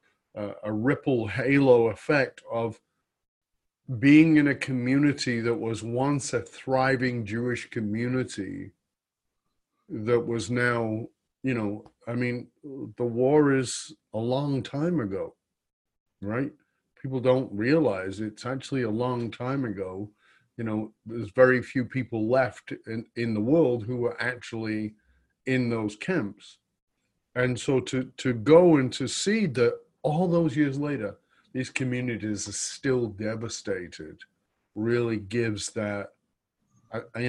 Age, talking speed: 50-69, 130 wpm